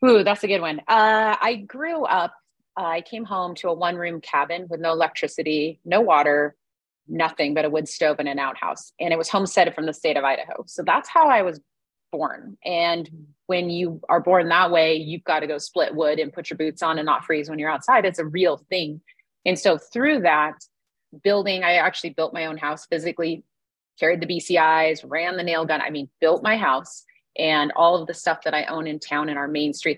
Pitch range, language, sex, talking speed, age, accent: 155-185 Hz, English, female, 225 wpm, 30-49, American